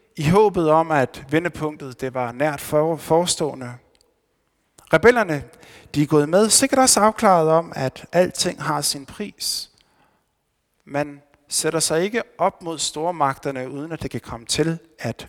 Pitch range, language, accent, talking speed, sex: 130-180 Hz, Danish, native, 140 wpm, male